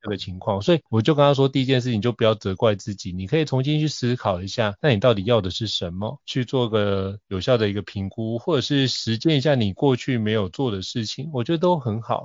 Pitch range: 105-130 Hz